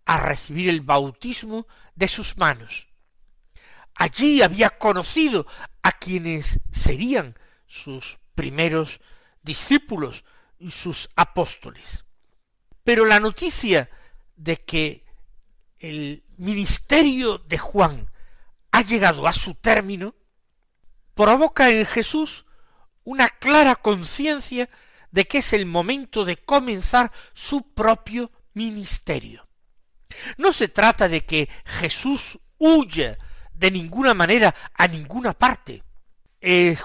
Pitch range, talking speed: 160-245 Hz, 105 wpm